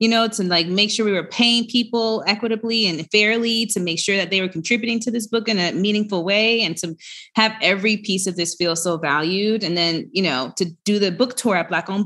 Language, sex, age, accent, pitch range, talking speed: English, female, 20-39, American, 170-205 Hz, 240 wpm